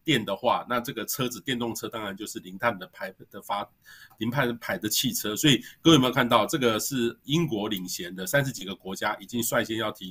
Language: Chinese